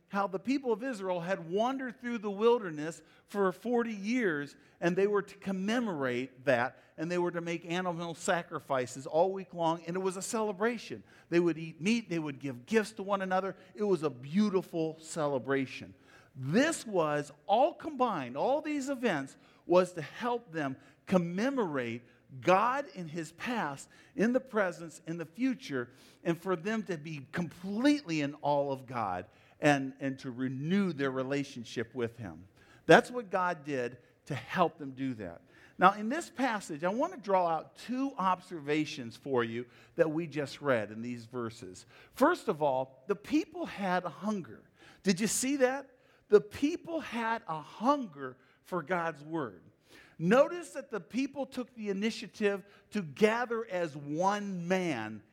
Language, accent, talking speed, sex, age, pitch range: English, American, 165 wpm, male, 50-69, 140-215 Hz